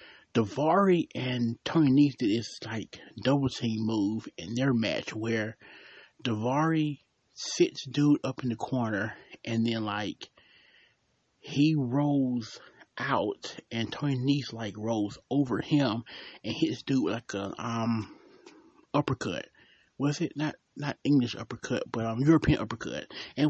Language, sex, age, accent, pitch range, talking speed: English, male, 30-49, American, 120-170 Hz, 135 wpm